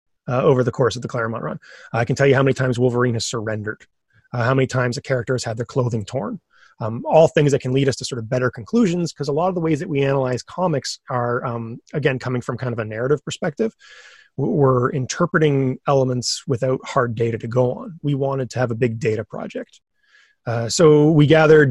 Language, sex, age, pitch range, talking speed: English, male, 30-49, 120-150 Hz, 230 wpm